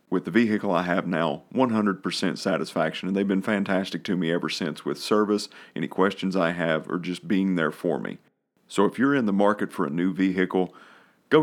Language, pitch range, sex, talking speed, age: English, 90-110 Hz, male, 205 wpm, 40-59